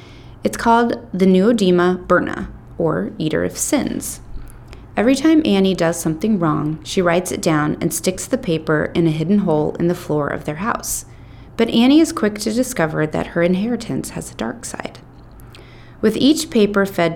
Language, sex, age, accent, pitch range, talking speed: English, female, 30-49, American, 155-240 Hz, 175 wpm